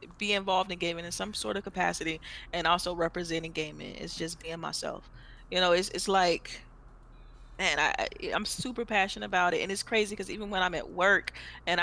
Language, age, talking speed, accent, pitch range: English, 20-39, 200 wpm, American, 165-190 Hz